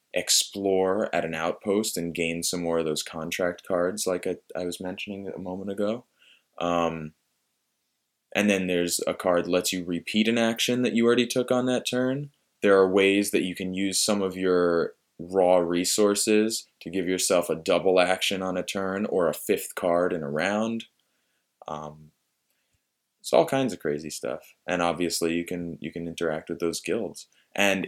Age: 20-39